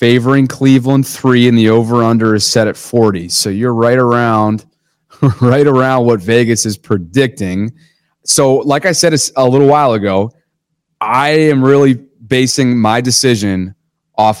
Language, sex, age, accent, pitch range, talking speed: English, male, 30-49, American, 110-150 Hz, 150 wpm